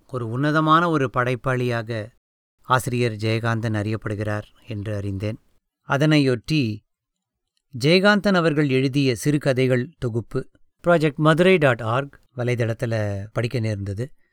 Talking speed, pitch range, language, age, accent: 90 wpm, 115-155 Hz, English, 30-49, Indian